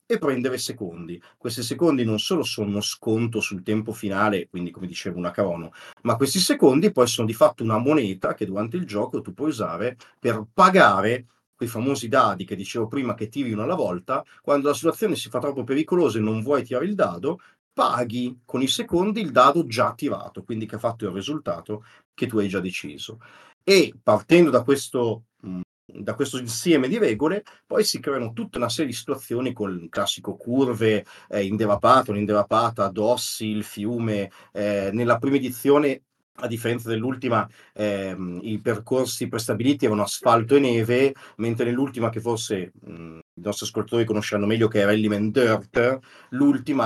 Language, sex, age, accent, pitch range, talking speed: Italian, male, 40-59, native, 105-125 Hz, 175 wpm